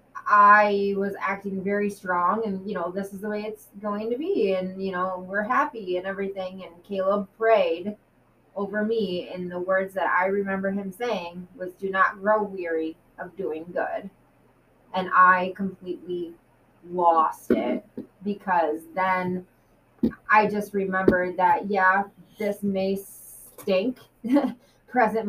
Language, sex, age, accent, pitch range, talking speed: English, female, 20-39, American, 180-205 Hz, 140 wpm